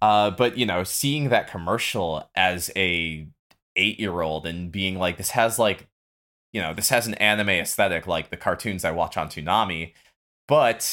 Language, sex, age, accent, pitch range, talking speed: English, male, 20-39, American, 80-105 Hz, 170 wpm